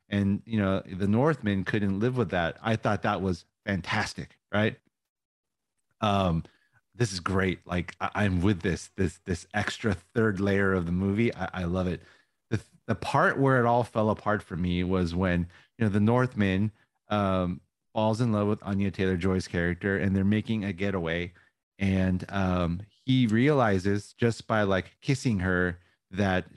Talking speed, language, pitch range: 170 wpm, English, 95-115 Hz